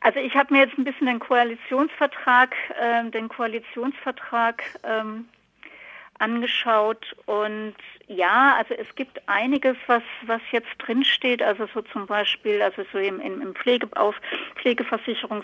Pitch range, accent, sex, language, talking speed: 200-235 Hz, German, female, German, 135 wpm